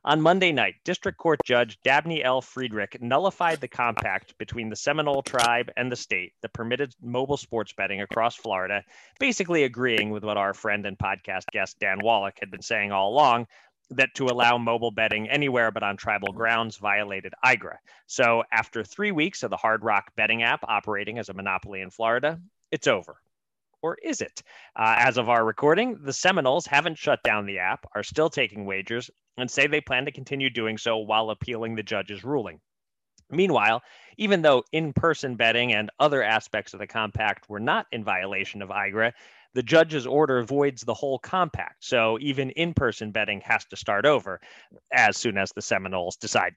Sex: male